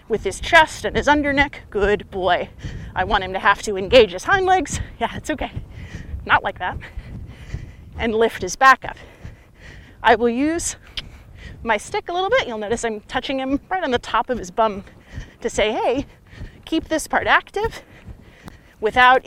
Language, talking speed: English, 180 wpm